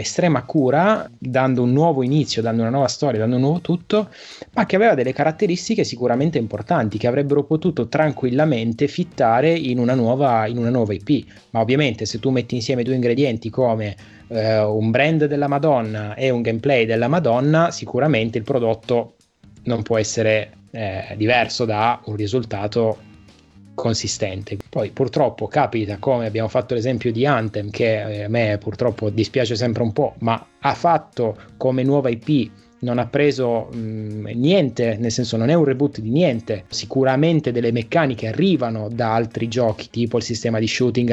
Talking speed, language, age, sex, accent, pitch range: 160 wpm, Italian, 20-39, male, native, 115-145 Hz